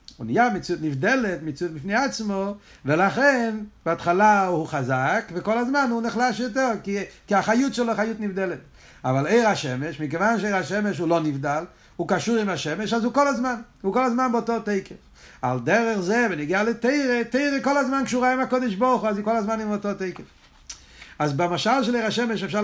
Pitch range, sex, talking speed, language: 170-235 Hz, male, 185 wpm, Hebrew